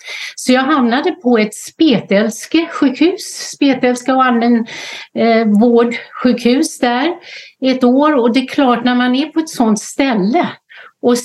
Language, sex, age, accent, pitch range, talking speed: Swedish, female, 60-79, native, 200-245 Hz, 150 wpm